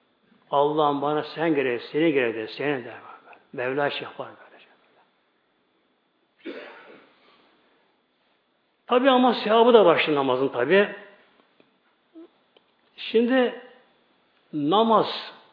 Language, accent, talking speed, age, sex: Turkish, native, 80 wpm, 60-79, male